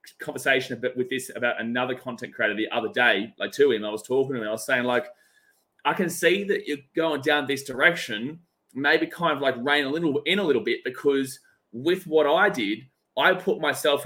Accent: Australian